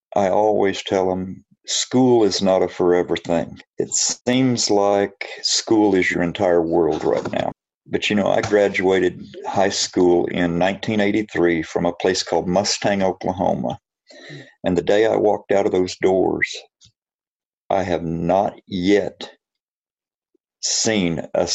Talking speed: 140 wpm